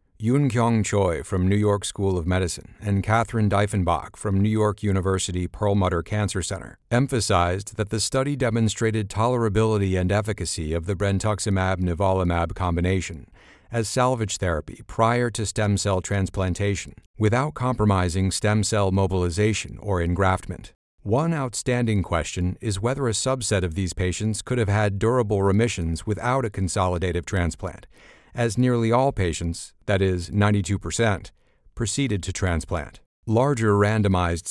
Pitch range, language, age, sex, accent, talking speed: 95-110 Hz, English, 50-69, male, American, 135 wpm